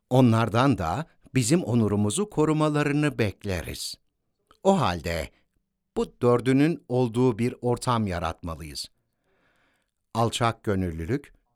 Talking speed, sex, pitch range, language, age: 85 wpm, male, 100-145 Hz, Turkish, 60-79